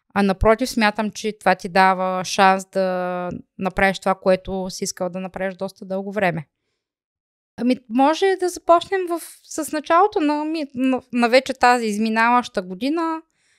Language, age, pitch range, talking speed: Bulgarian, 20-39, 185-235 Hz, 145 wpm